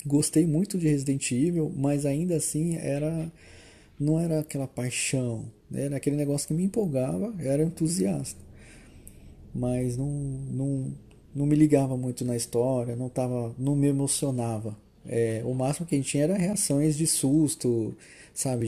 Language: Portuguese